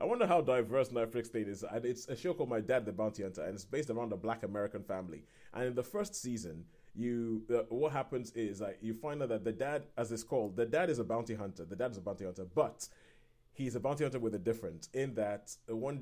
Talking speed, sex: 250 wpm, male